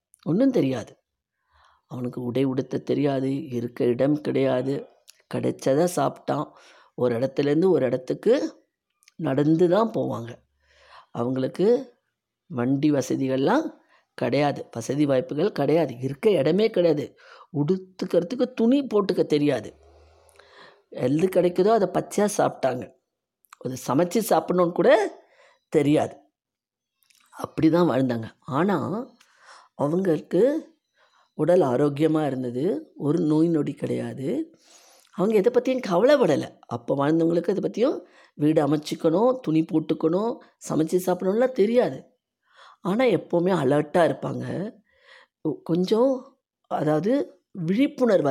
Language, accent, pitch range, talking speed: Tamil, native, 135-195 Hz, 90 wpm